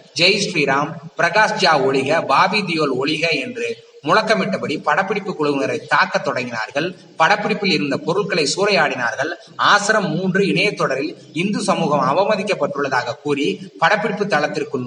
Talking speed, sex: 100 wpm, male